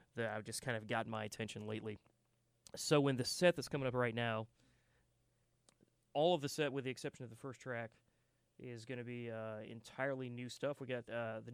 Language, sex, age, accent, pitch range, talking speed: English, male, 30-49, American, 115-135 Hz, 215 wpm